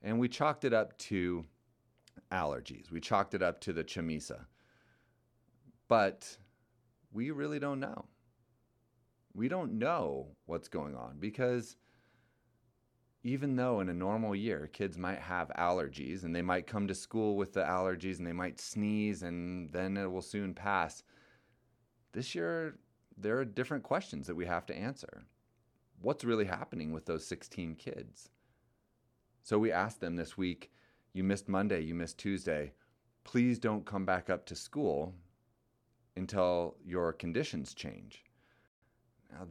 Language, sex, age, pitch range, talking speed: English, male, 30-49, 90-120 Hz, 145 wpm